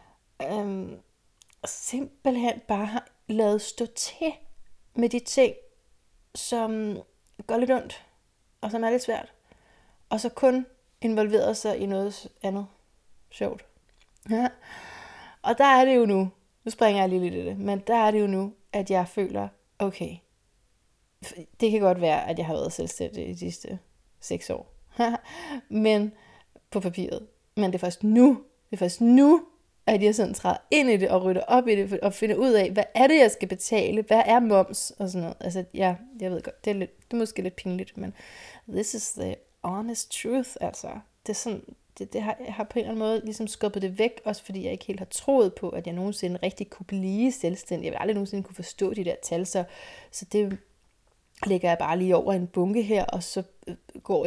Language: Danish